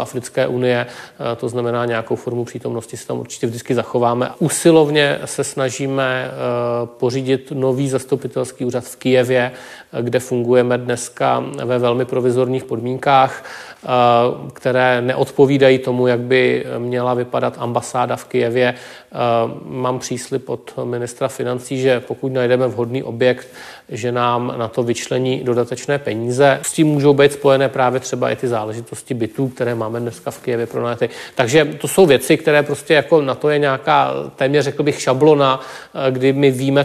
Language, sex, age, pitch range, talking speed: Czech, male, 40-59, 120-135 Hz, 150 wpm